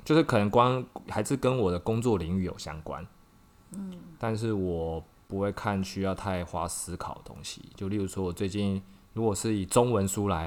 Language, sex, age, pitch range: Chinese, male, 20-39, 90-105 Hz